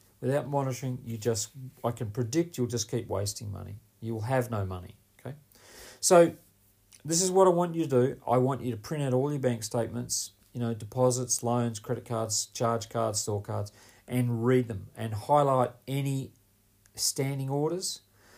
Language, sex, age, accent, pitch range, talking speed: English, male, 40-59, Australian, 110-130 Hz, 175 wpm